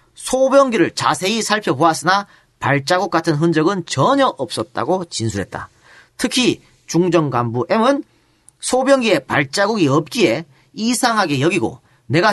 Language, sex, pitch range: Korean, male, 145-215 Hz